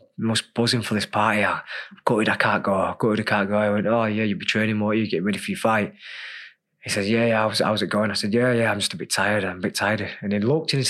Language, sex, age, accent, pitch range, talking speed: English, male, 20-39, British, 115-145 Hz, 325 wpm